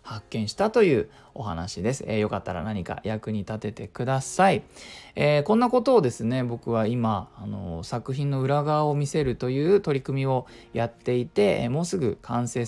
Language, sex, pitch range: Japanese, male, 110-155 Hz